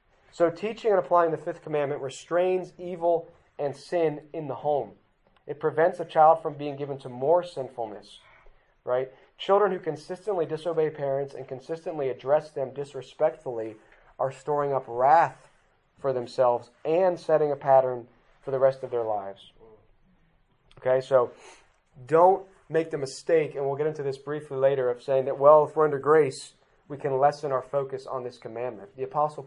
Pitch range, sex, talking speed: 130-160 Hz, male, 165 wpm